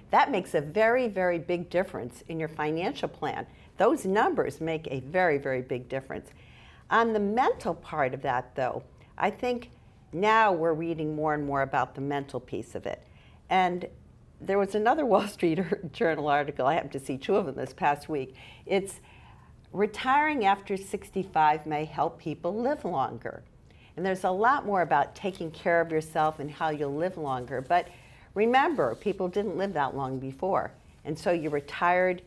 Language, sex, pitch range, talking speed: English, female, 140-185 Hz, 175 wpm